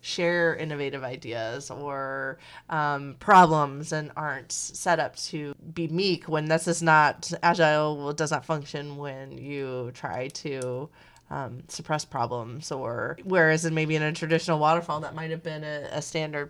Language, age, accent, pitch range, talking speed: English, 30-49, American, 145-165 Hz, 165 wpm